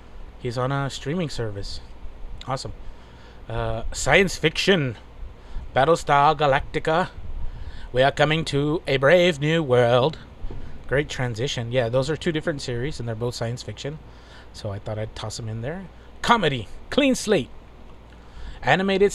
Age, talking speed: 30-49, 140 wpm